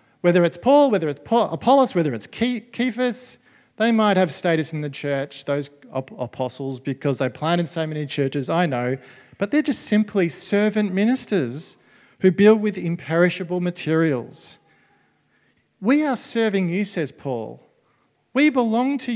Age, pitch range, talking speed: 40-59, 135-190 Hz, 145 wpm